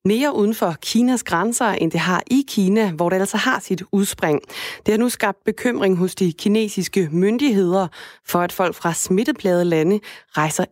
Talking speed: 175 wpm